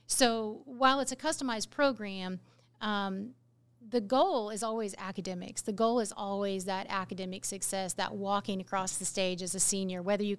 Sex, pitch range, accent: female, 190-225 Hz, American